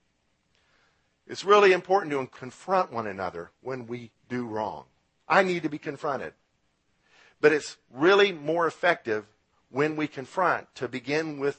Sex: male